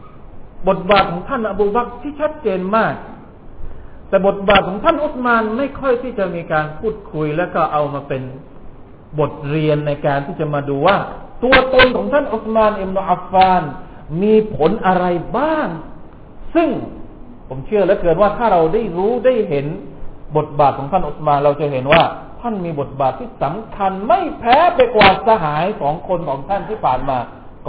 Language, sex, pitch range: Thai, male, 150-250 Hz